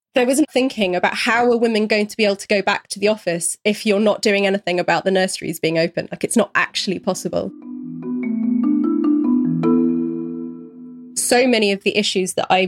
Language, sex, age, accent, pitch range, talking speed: English, female, 20-39, British, 195-235 Hz, 185 wpm